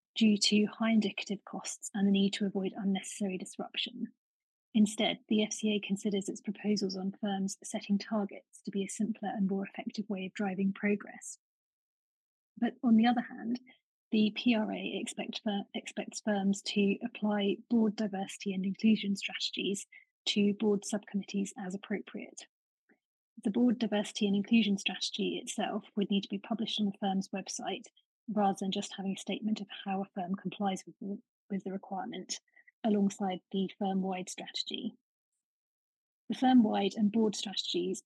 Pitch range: 195-225 Hz